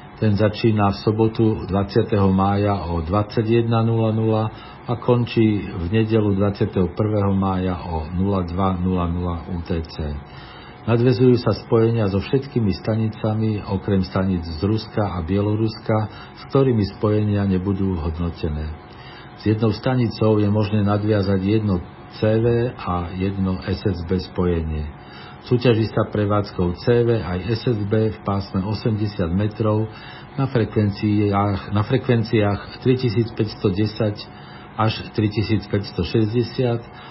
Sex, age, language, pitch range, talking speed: male, 50-69, Slovak, 95-110 Hz, 100 wpm